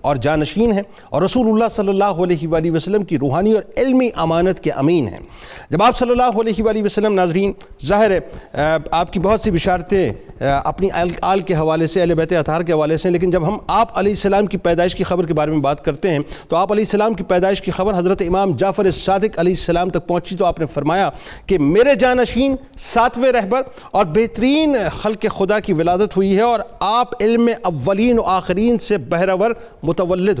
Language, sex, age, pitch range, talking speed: Urdu, male, 40-59, 170-225 Hz, 200 wpm